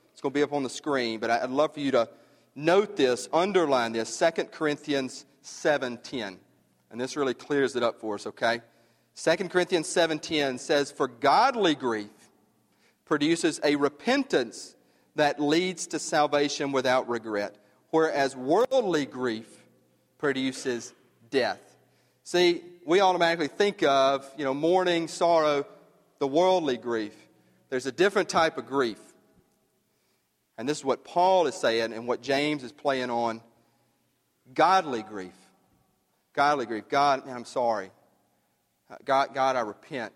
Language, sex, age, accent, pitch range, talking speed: English, male, 40-59, American, 125-175 Hz, 140 wpm